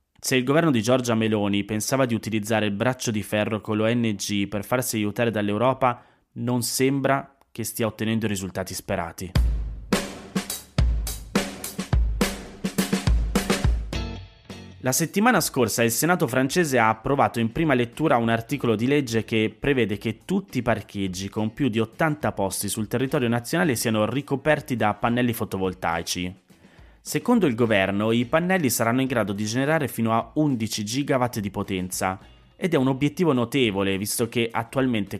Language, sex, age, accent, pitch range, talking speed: Italian, male, 20-39, native, 100-125 Hz, 145 wpm